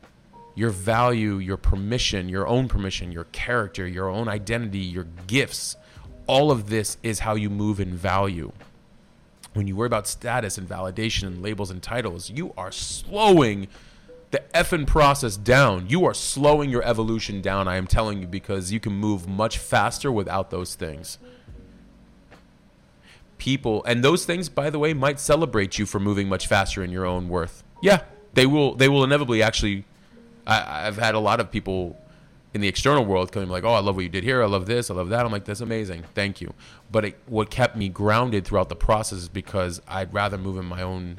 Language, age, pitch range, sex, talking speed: English, 30-49, 95-115 Hz, male, 195 wpm